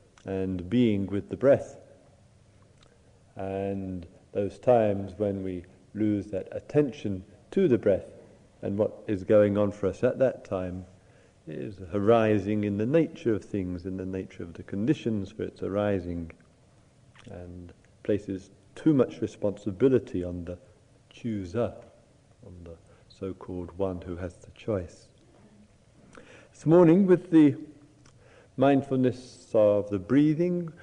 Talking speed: 130 wpm